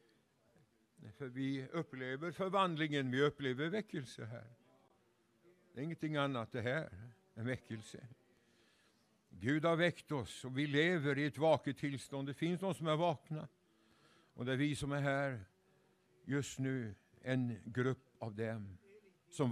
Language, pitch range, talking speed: English, 120-145 Hz, 140 wpm